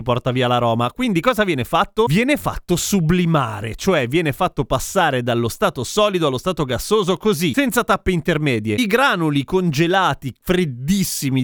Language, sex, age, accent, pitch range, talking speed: Italian, male, 30-49, native, 135-195 Hz, 145 wpm